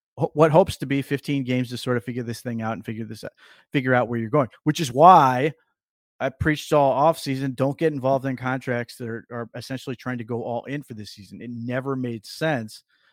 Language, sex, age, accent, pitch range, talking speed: English, male, 30-49, American, 115-130 Hz, 230 wpm